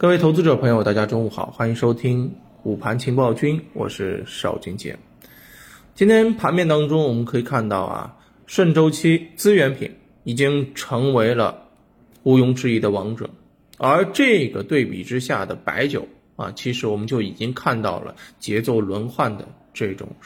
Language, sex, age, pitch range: Chinese, male, 20-39, 115-165 Hz